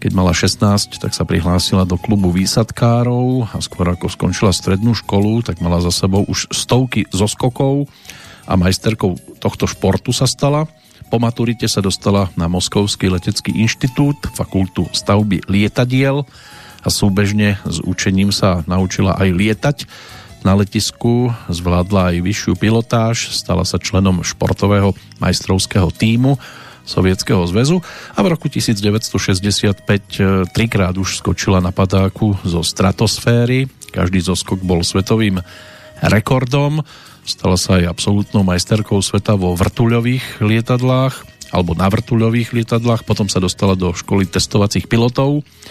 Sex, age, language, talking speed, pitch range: male, 40-59, Slovak, 130 wpm, 95-115 Hz